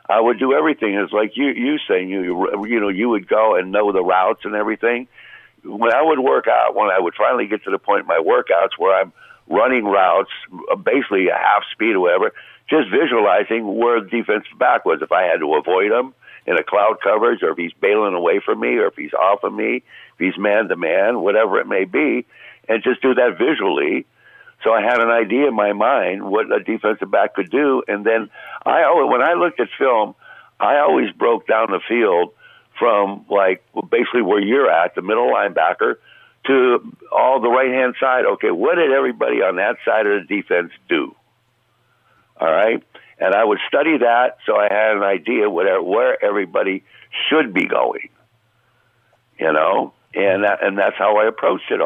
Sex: male